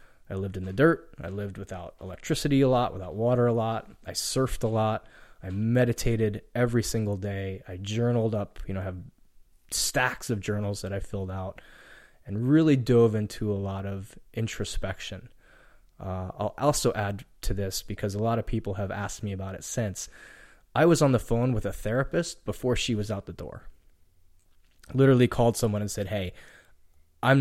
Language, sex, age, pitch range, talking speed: English, male, 20-39, 95-120 Hz, 180 wpm